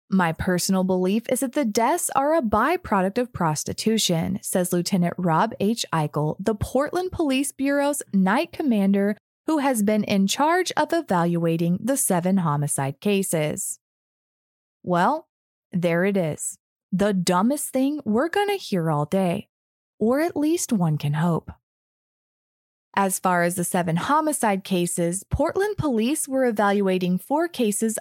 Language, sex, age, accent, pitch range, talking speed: English, female, 20-39, American, 175-270 Hz, 140 wpm